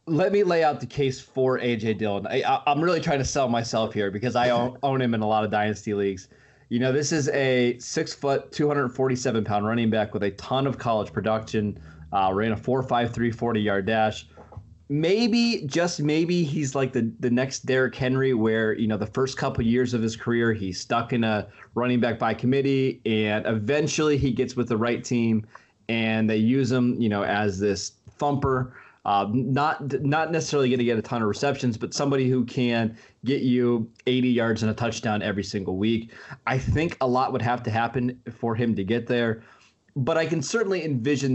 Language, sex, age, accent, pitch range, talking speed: English, male, 20-39, American, 110-130 Hz, 210 wpm